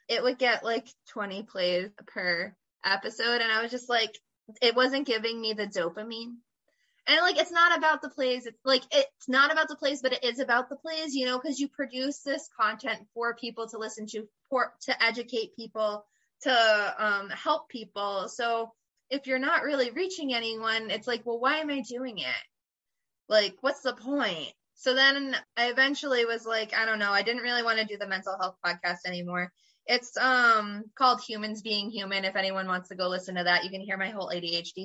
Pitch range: 200-265 Hz